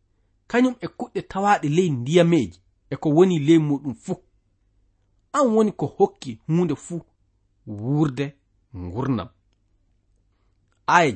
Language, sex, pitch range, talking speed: English, male, 100-155 Hz, 95 wpm